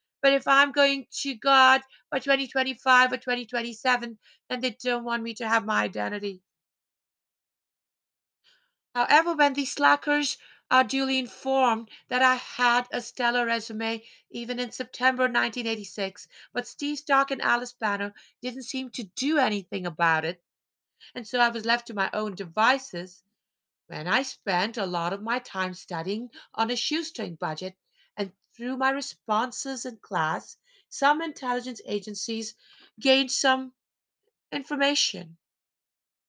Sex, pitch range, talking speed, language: female, 205-265 Hz, 135 wpm, English